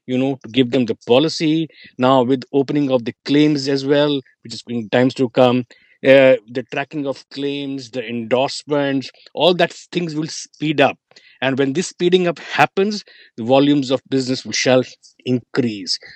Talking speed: 175 wpm